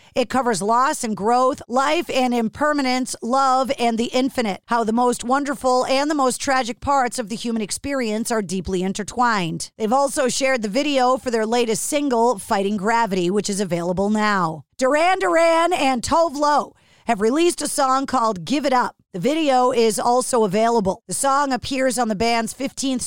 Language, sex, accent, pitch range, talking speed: English, female, American, 225-280 Hz, 175 wpm